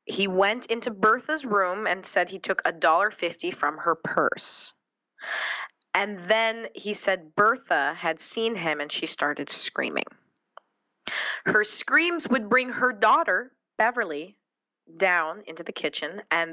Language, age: English, 20-39